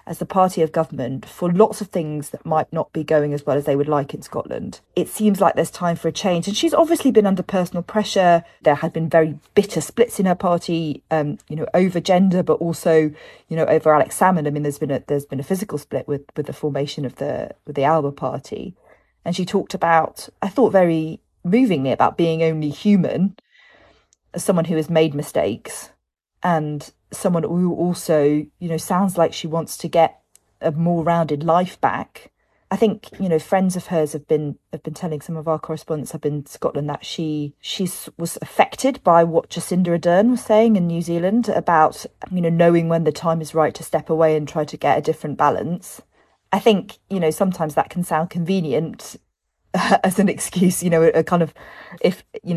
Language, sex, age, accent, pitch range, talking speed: English, female, 40-59, British, 155-180 Hz, 210 wpm